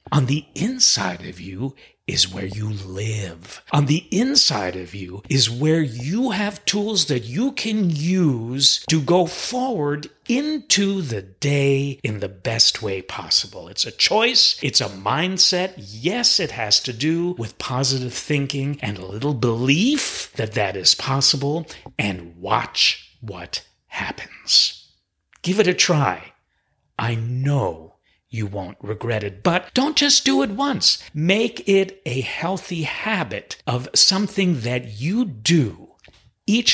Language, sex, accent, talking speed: English, male, American, 140 wpm